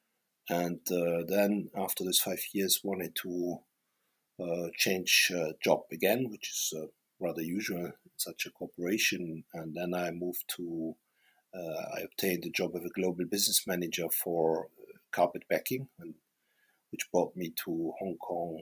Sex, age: male, 50-69